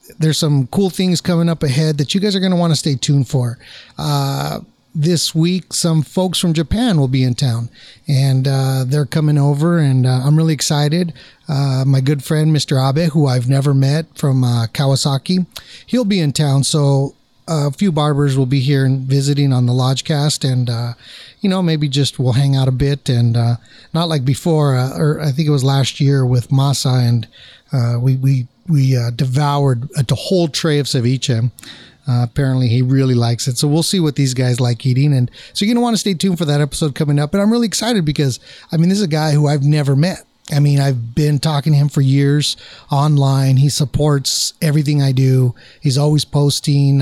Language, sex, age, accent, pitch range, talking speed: English, male, 30-49, American, 135-160 Hz, 210 wpm